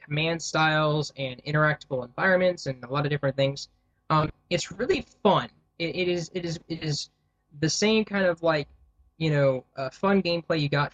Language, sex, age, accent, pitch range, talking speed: English, male, 10-29, American, 135-165 Hz, 185 wpm